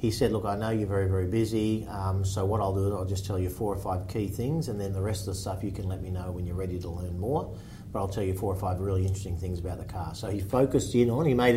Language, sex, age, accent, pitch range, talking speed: English, male, 40-59, Australian, 95-115 Hz, 320 wpm